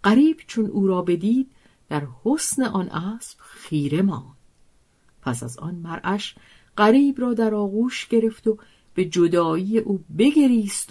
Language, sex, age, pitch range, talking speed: Persian, female, 50-69, 150-225 Hz, 140 wpm